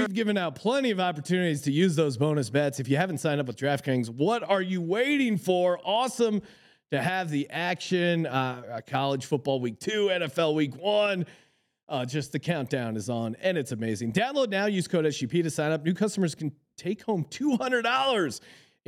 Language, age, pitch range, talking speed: English, 30-49, 140-185 Hz, 190 wpm